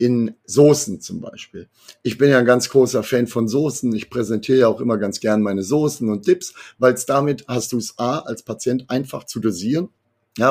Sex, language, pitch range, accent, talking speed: male, German, 110-135 Hz, German, 205 wpm